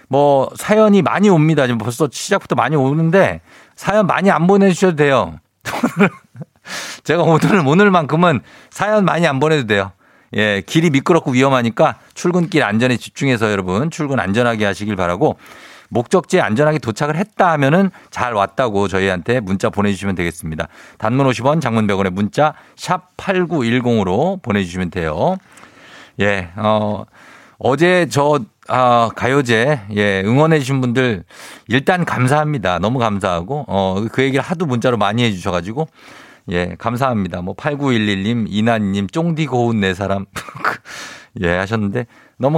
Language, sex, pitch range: Korean, male, 100-155 Hz